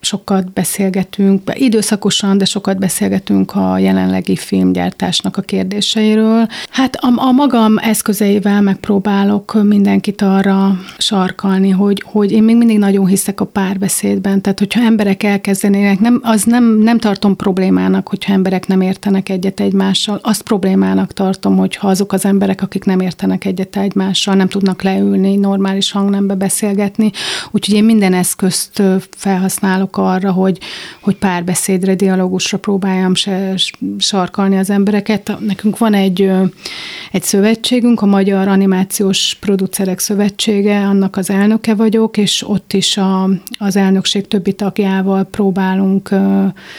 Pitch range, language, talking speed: 190-205 Hz, Hungarian, 125 wpm